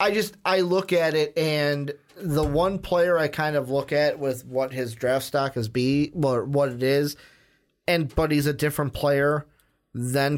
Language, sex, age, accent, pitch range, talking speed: English, male, 30-49, American, 135-160 Hz, 190 wpm